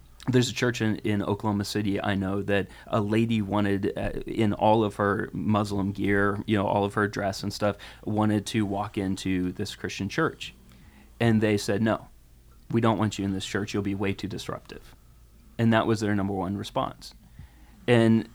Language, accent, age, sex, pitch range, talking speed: English, American, 30-49, male, 100-115 Hz, 195 wpm